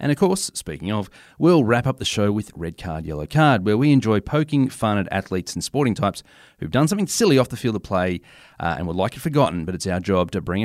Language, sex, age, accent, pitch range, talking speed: English, male, 30-49, Australian, 90-130 Hz, 260 wpm